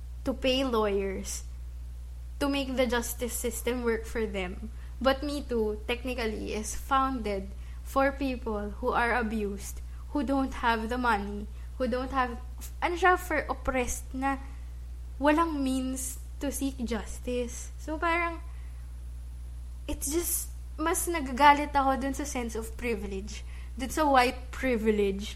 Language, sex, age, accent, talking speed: English, female, 20-39, Filipino, 135 wpm